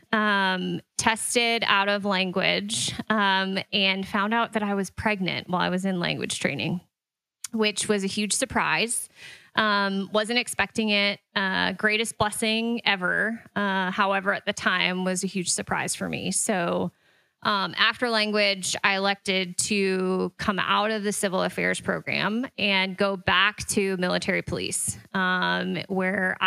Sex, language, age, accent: female, English, 20-39, American